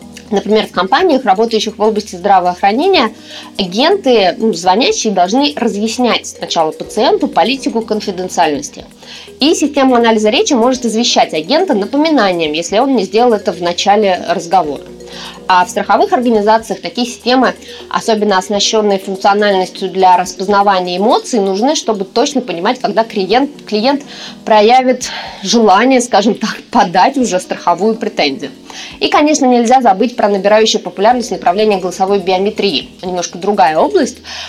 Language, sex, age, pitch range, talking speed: Russian, female, 20-39, 195-245 Hz, 125 wpm